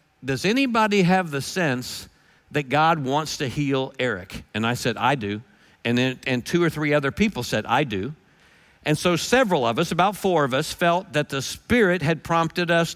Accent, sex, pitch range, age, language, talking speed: American, male, 145-185 Hz, 50-69, English, 200 wpm